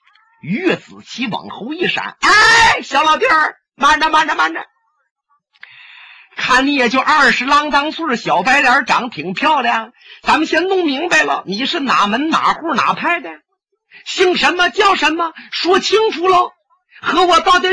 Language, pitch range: Chinese, 275-405 Hz